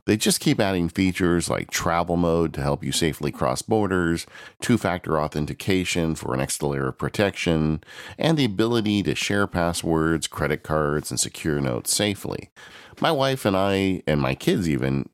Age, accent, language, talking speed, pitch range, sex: 40-59, American, English, 165 wpm, 75-100 Hz, male